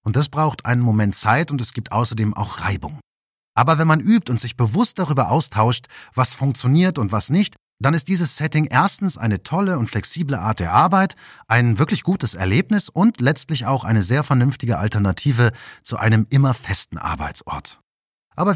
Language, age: German, 40-59